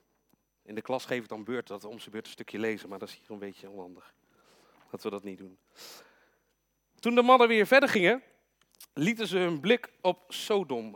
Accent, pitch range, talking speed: Dutch, 125-195 Hz, 215 wpm